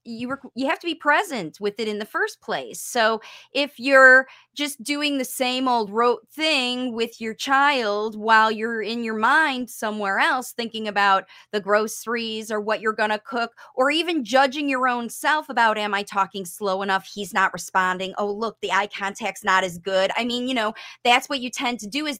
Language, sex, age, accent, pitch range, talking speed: English, female, 30-49, American, 200-265 Hz, 210 wpm